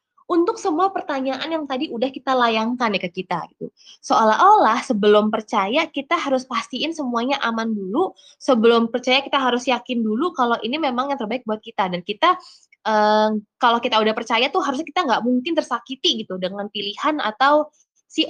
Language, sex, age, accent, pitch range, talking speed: Indonesian, female, 20-39, native, 225-310 Hz, 170 wpm